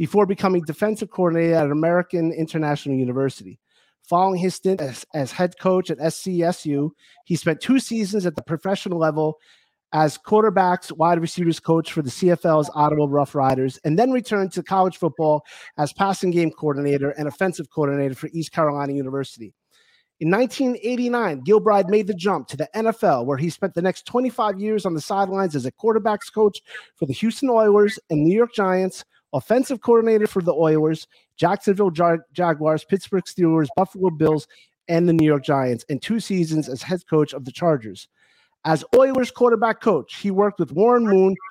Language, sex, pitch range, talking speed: English, male, 155-205 Hz, 170 wpm